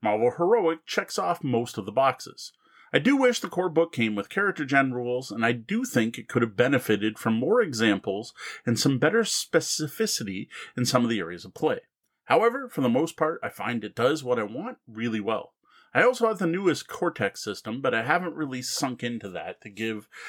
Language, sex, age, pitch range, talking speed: English, male, 30-49, 115-175 Hz, 210 wpm